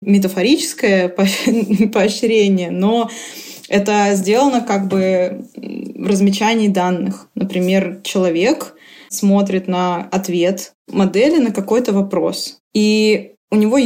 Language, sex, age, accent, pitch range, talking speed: Russian, female, 20-39, native, 195-230 Hz, 95 wpm